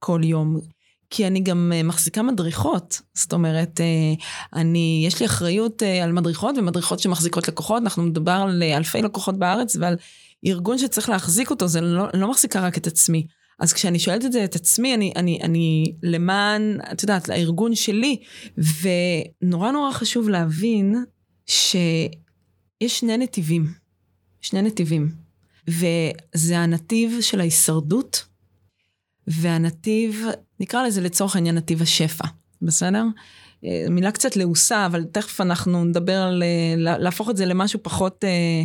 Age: 20-39